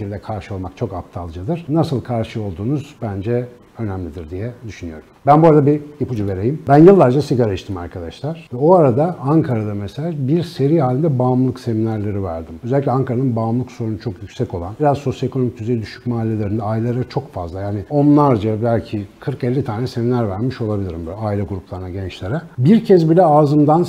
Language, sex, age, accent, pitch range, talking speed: Turkish, male, 60-79, native, 110-145 Hz, 160 wpm